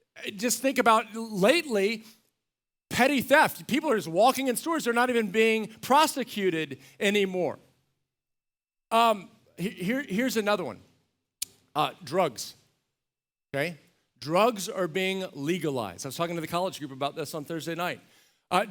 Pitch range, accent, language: 180-255 Hz, American, English